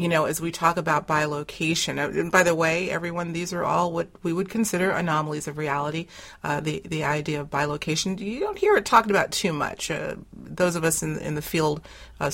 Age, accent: 30-49, American